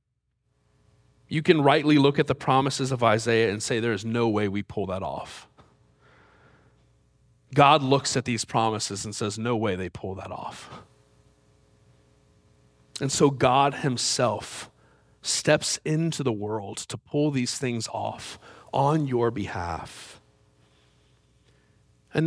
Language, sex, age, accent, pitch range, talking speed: English, male, 40-59, American, 110-145 Hz, 130 wpm